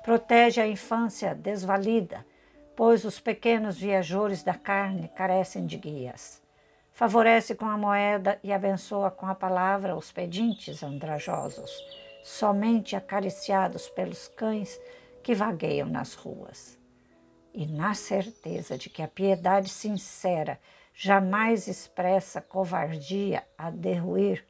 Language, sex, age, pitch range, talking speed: Portuguese, female, 60-79, 180-220 Hz, 115 wpm